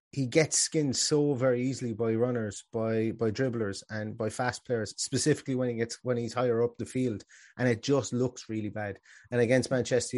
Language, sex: English, male